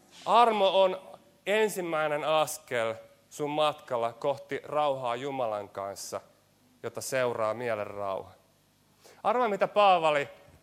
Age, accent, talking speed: 30-49, native, 95 wpm